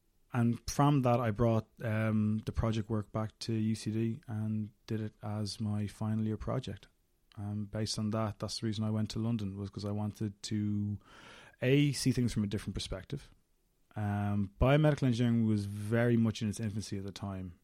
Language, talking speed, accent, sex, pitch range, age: English, 185 wpm, Irish, male, 100-110 Hz, 20-39